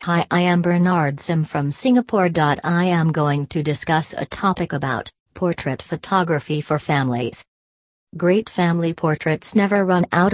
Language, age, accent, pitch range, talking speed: English, 40-59, American, 150-175 Hz, 145 wpm